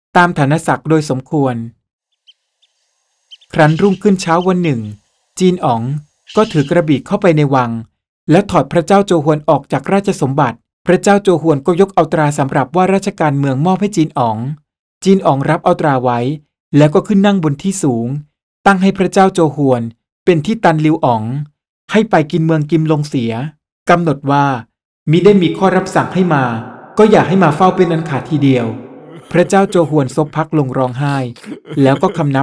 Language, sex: Thai, male